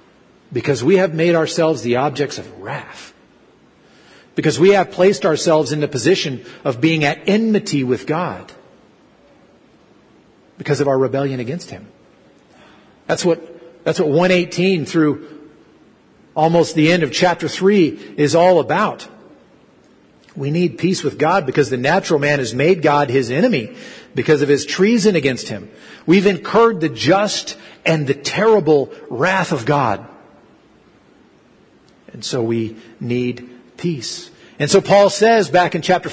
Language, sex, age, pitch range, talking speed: English, male, 40-59, 140-190 Hz, 145 wpm